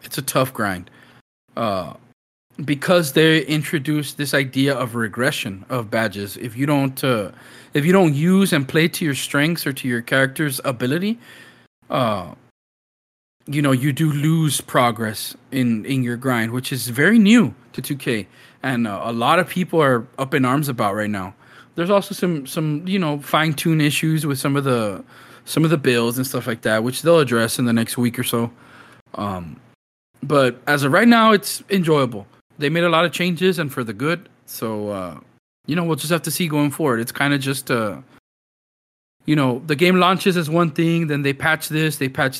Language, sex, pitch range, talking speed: English, male, 125-160 Hz, 200 wpm